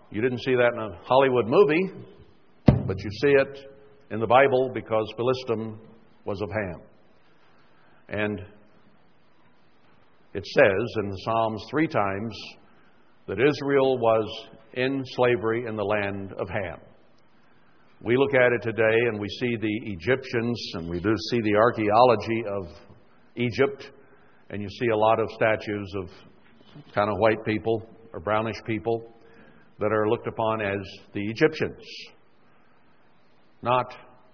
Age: 60-79